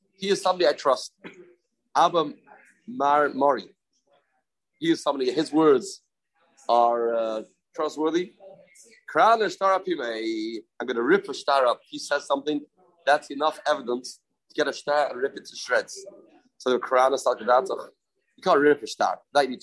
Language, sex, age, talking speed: English, male, 30-49, 170 wpm